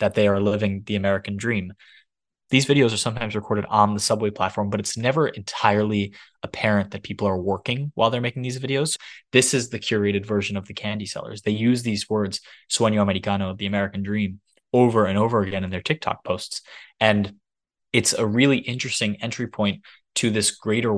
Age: 20-39